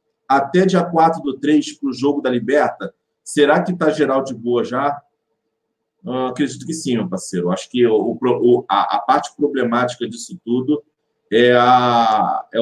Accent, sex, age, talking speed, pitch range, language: Brazilian, male, 40-59, 170 wpm, 125-175 Hz, Portuguese